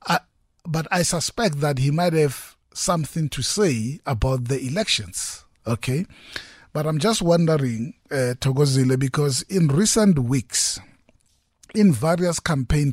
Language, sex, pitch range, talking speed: English, male, 125-160 Hz, 125 wpm